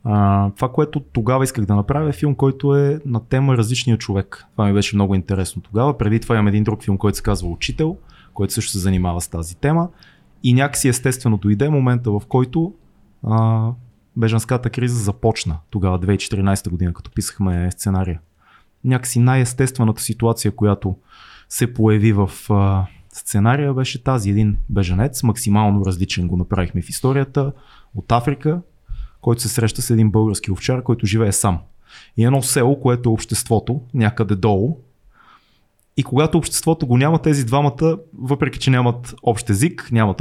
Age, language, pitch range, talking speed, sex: 30-49, Bulgarian, 100-140 Hz, 160 wpm, male